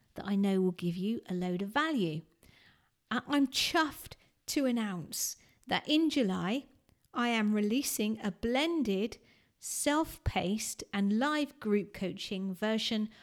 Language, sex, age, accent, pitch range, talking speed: English, female, 40-59, British, 190-240 Hz, 125 wpm